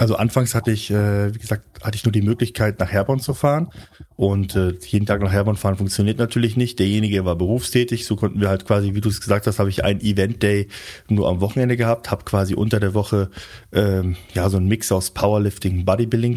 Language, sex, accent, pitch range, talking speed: German, male, German, 95-110 Hz, 220 wpm